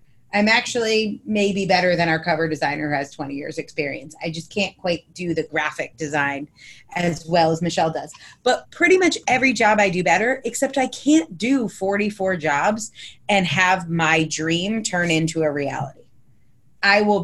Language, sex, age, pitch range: English, female, 30-49, 160-215 Hz